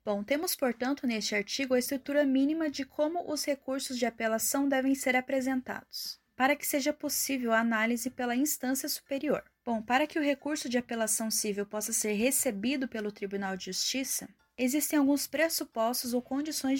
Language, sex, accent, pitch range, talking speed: Portuguese, female, Brazilian, 230-275 Hz, 165 wpm